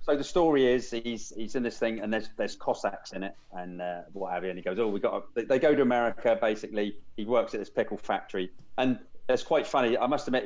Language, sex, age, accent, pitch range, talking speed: English, male, 40-59, British, 105-135 Hz, 265 wpm